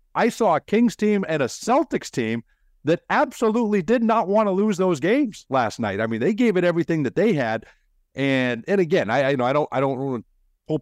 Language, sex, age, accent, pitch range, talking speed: English, male, 50-69, American, 125-170 Hz, 220 wpm